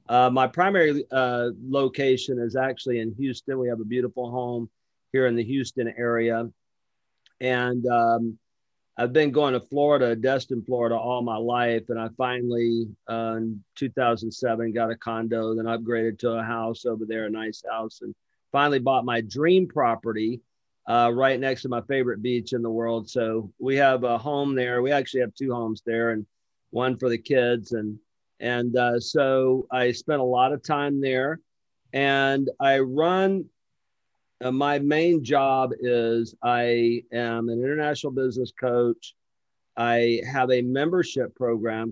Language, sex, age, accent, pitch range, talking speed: English, male, 50-69, American, 115-135 Hz, 160 wpm